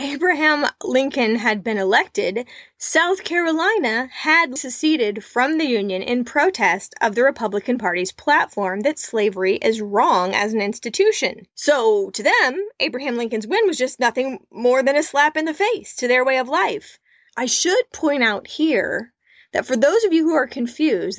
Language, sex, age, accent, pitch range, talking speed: English, female, 20-39, American, 215-320 Hz, 170 wpm